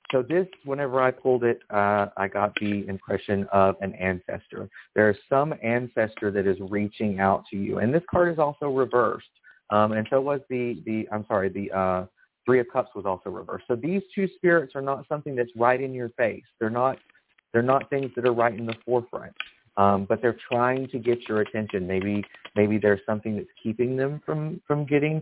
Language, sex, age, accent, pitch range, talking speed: English, male, 30-49, American, 105-130 Hz, 205 wpm